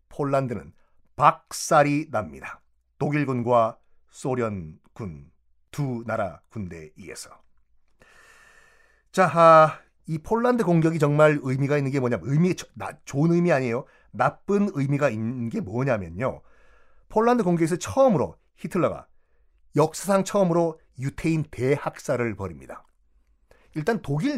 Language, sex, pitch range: Korean, male, 120-190 Hz